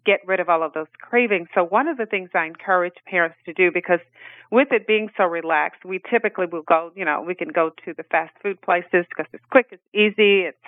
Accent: American